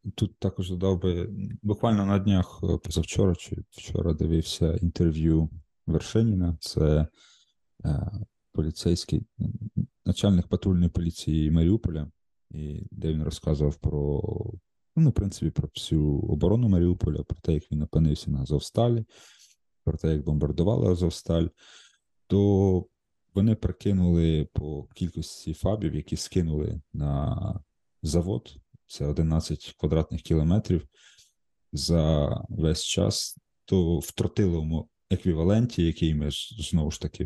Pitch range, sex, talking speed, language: 80-95 Hz, male, 110 wpm, Ukrainian